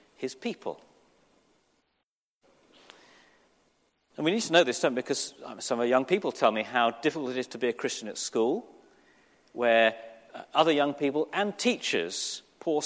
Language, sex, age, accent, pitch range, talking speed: English, male, 40-59, British, 120-175 Hz, 170 wpm